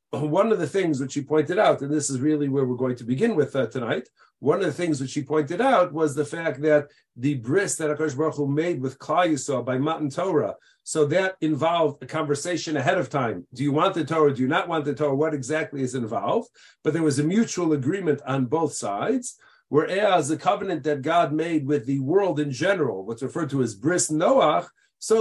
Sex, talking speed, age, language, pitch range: male, 225 wpm, 50-69, English, 145-175 Hz